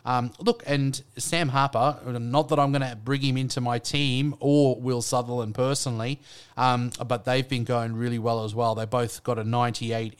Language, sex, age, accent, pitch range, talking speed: English, male, 30-49, Australian, 120-145 Hz, 195 wpm